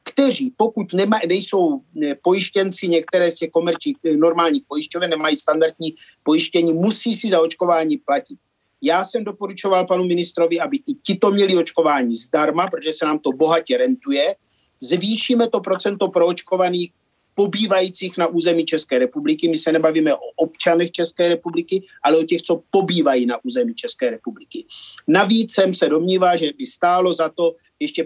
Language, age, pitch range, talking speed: Czech, 50-69, 165-195 Hz, 155 wpm